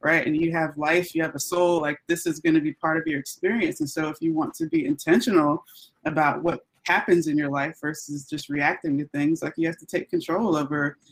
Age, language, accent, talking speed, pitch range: 20-39, English, American, 245 wpm, 150-180 Hz